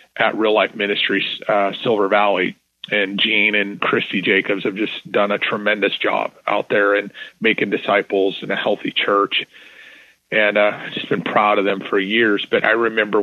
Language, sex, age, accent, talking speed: English, male, 40-59, American, 175 wpm